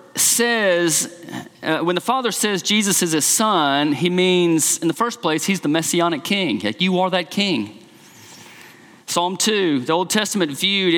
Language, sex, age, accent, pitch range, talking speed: English, male, 40-59, American, 180-240 Hz, 165 wpm